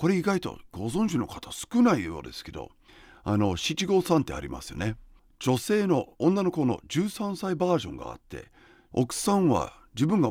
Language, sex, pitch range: Japanese, male, 105-175 Hz